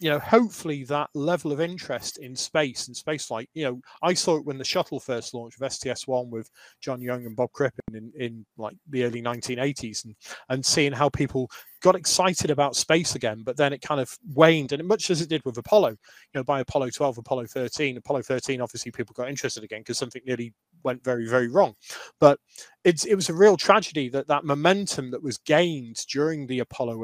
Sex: male